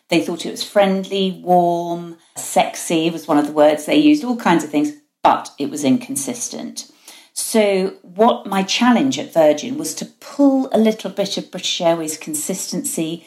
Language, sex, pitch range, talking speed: English, female, 160-260 Hz, 170 wpm